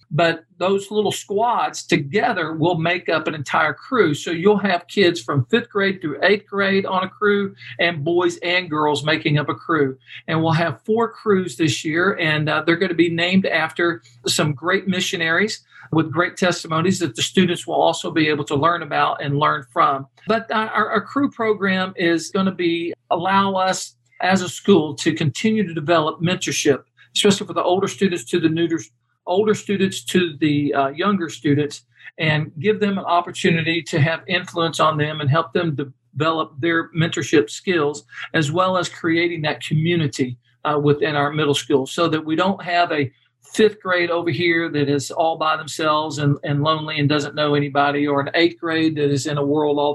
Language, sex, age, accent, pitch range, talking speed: English, male, 50-69, American, 150-180 Hz, 190 wpm